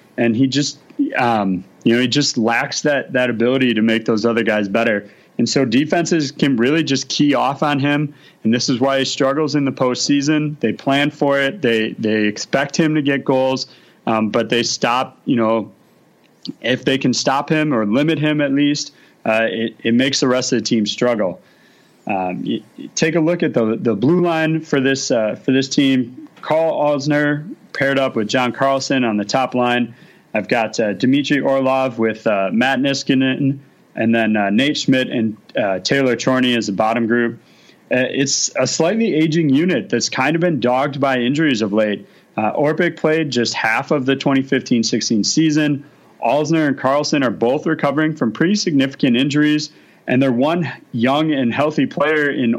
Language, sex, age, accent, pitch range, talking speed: English, male, 30-49, American, 120-150 Hz, 190 wpm